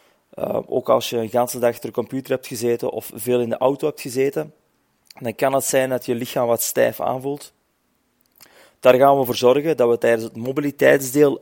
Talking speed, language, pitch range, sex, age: 205 wpm, English, 115-135 Hz, male, 30-49